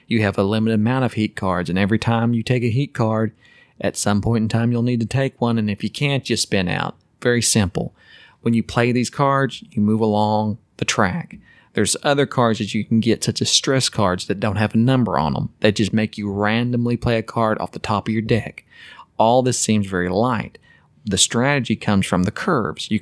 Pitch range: 105-120 Hz